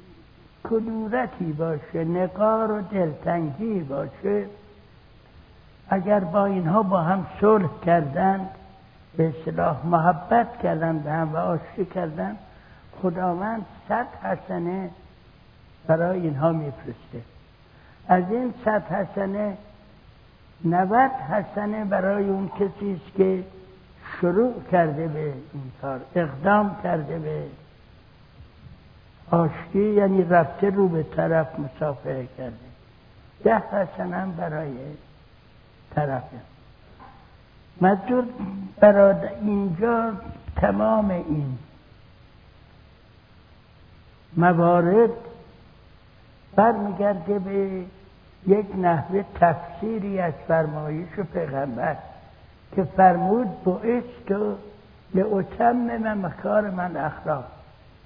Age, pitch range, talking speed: 60-79, 160-205 Hz, 85 wpm